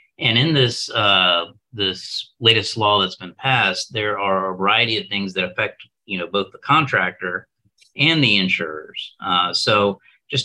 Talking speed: 165 wpm